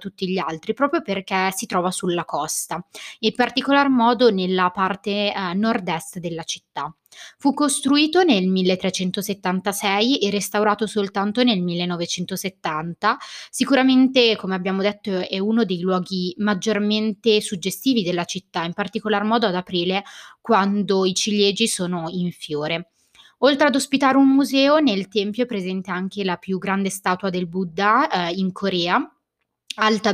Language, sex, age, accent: Italian, female, 20-39, native